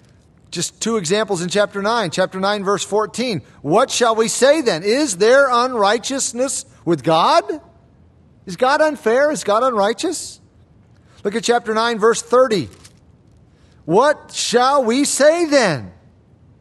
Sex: male